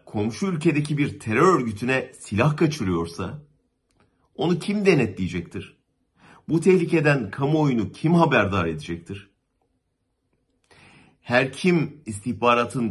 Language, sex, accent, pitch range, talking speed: German, male, Turkish, 105-150 Hz, 90 wpm